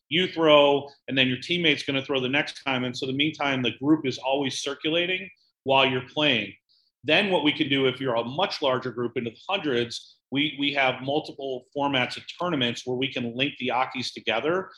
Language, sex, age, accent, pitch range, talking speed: English, male, 40-59, American, 125-145 Hz, 215 wpm